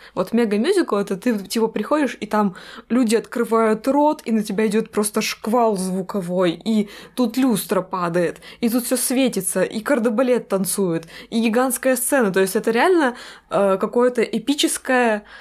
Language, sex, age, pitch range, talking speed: Russian, female, 20-39, 200-250 Hz, 150 wpm